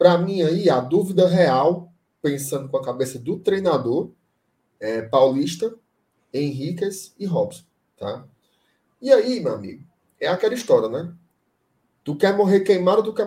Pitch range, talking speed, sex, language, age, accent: 145-205 Hz, 150 wpm, male, Portuguese, 20-39, Brazilian